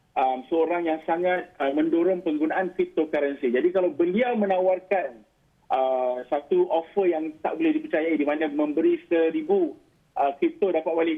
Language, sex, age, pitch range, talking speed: Malay, male, 40-59, 150-190 Hz, 150 wpm